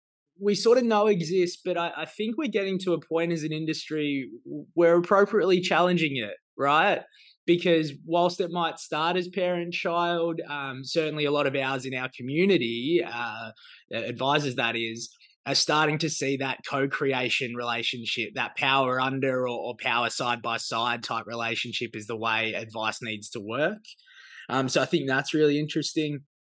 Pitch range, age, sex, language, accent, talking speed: 125-165 Hz, 20-39, male, English, Australian, 170 wpm